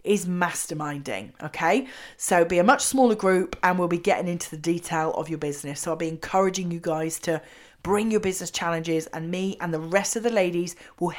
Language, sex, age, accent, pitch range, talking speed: English, female, 30-49, British, 170-210 Hz, 210 wpm